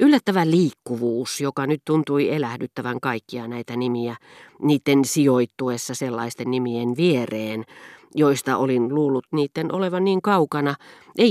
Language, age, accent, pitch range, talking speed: Finnish, 40-59, native, 125-160 Hz, 115 wpm